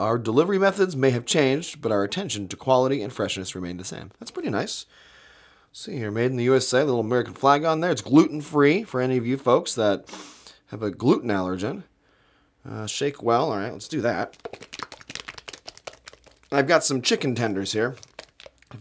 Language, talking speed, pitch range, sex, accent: English, 180 wpm, 100-140 Hz, male, American